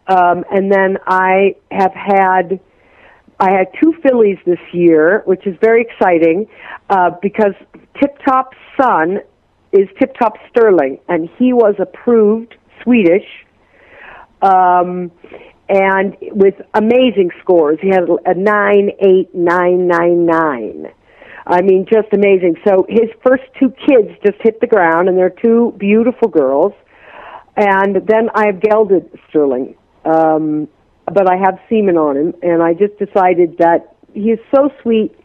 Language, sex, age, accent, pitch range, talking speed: English, female, 50-69, American, 180-220 Hz, 140 wpm